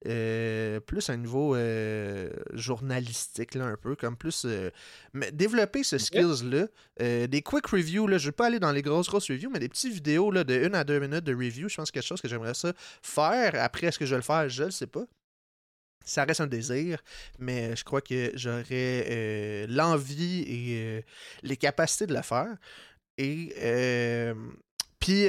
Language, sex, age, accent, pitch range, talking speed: French, male, 20-39, Canadian, 120-155 Hz, 200 wpm